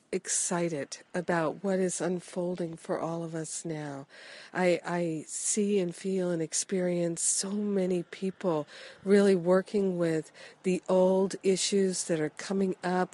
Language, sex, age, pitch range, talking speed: English, female, 50-69, 170-195 Hz, 135 wpm